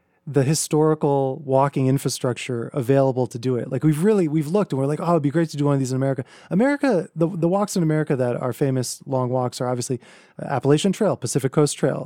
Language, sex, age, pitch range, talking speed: English, male, 20-39, 125-150 Hz, 225 wpm